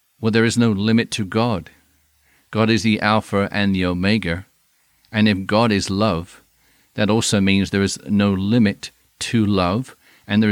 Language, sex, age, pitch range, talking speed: English, male, 50-69, 95-115 Hz, 170 wpm